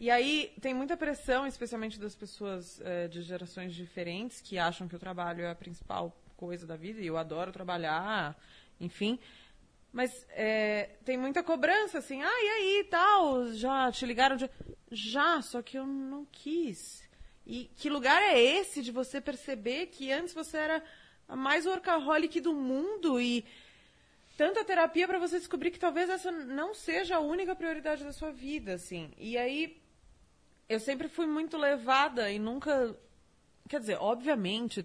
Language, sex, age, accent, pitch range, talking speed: Portuguese, female, 20-39, Brazilian, 205-310 Hz, 165 wpm